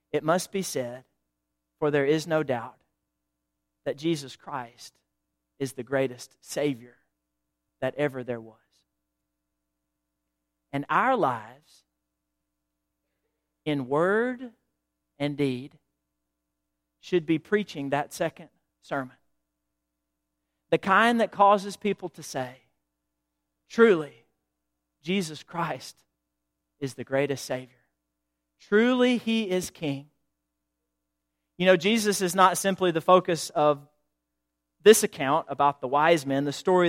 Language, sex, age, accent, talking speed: English, male, 40-59, American, 110 wpm